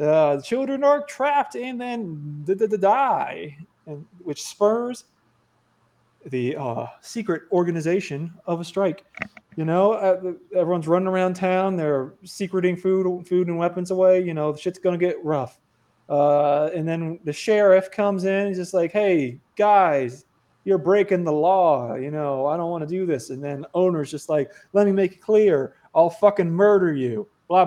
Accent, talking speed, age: American, 170 wpm, 20-39